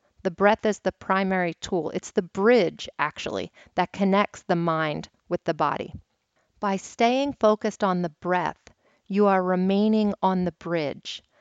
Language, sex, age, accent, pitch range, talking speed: English, female, 40-59, American, 170-215 Hz, 155 wpm